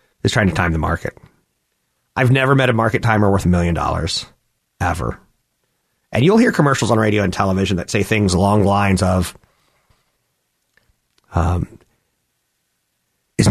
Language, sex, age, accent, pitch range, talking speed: English, male, 40-59, American, 110-185 Hz, 150 wpm